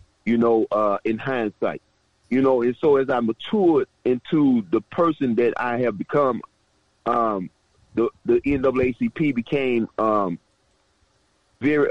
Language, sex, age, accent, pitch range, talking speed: English, male, 30-49, American, 110-145 Hz, 130 wpm